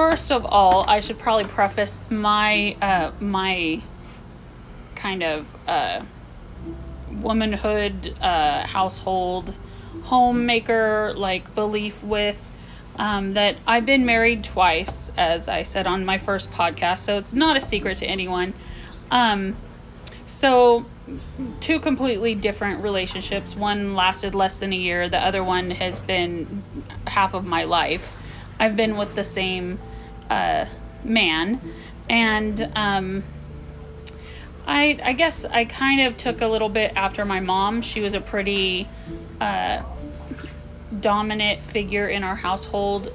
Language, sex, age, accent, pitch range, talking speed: English, female, 10-29, American, 180-220 Hz, 130 wpm